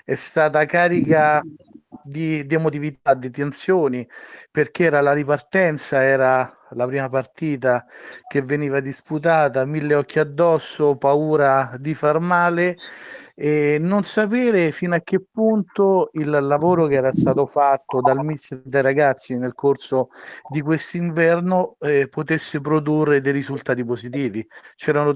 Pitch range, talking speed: 130-160 Hz, 130 wpm